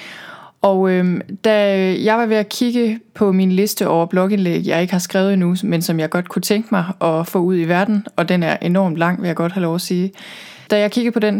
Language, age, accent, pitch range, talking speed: Danish, 20-39, native, 175-200 Hz, 245 wpm